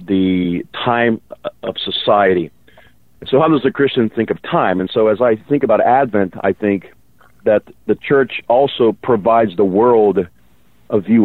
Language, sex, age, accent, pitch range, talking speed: English, male, 50-69, American, 90-115 Hz, 160 wpm